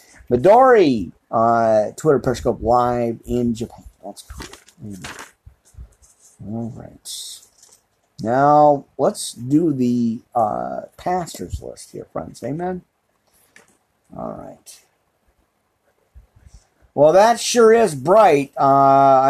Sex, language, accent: male, English, American